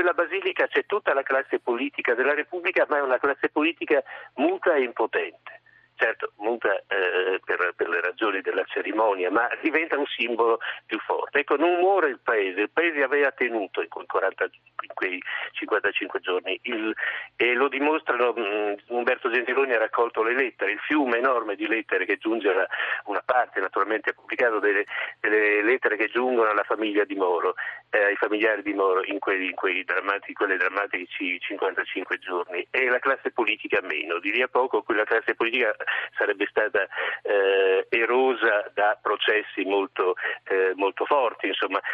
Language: Italian